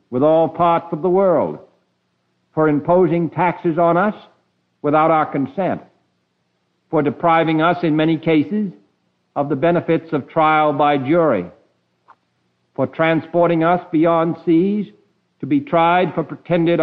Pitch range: 115-165 Hz